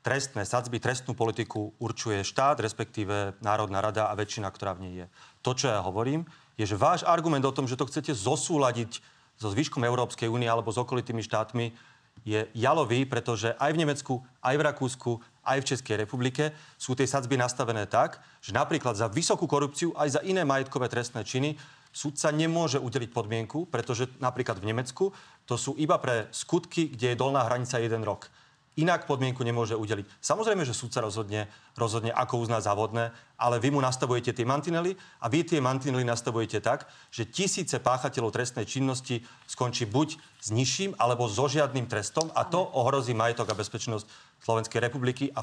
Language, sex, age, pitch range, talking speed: Slovak, male, 40-59, 115-145 Hz, 175 wpm